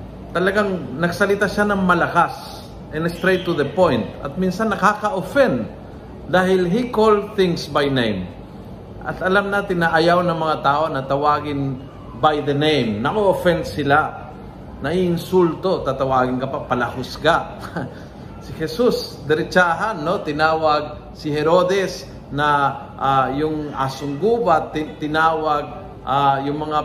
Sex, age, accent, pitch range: male, 50-69, native, 140-175 Hz